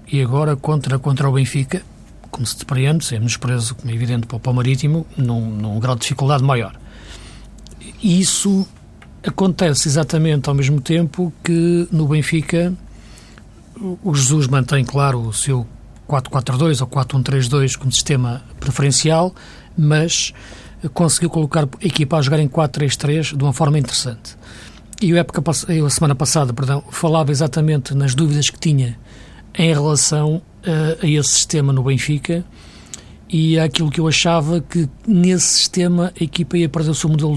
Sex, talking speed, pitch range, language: male, 150 wpm, 135-160 Hz, Portuguese